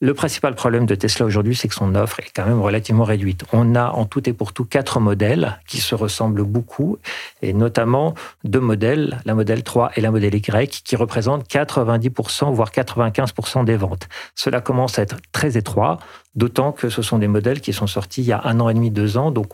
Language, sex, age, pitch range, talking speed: French, male, 40-59, 110-130 Hz, 220 wpm